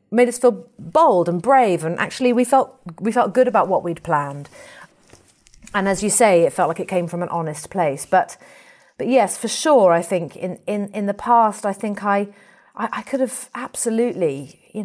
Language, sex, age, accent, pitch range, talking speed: English, female, 30-49, British, 170-240 Hz, 205 wpm